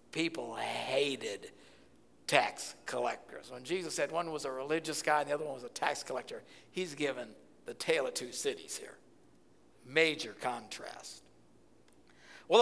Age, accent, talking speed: 60-79, American, 145 wpm